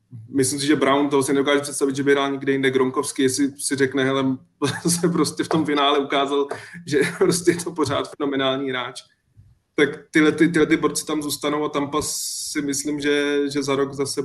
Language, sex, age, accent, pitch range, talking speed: Czech, male, 20-39, native, 135-145 Hz, 200 wpm